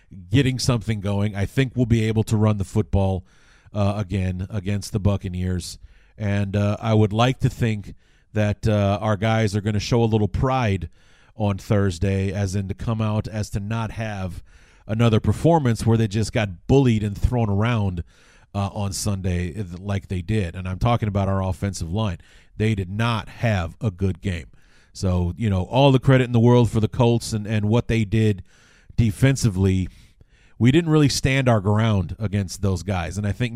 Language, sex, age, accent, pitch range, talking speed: English, male, 40-59, American, 100-115 Hz, 190 wpm